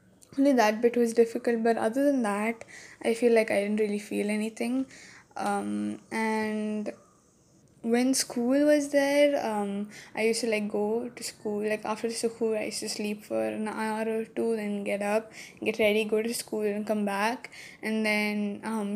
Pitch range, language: 205-230 Hz, English